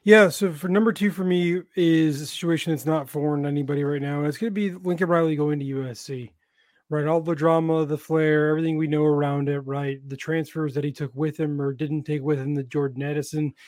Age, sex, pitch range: 20-39, male, 145-165 Hz